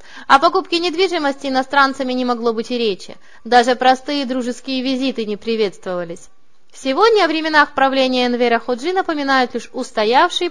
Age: 20-39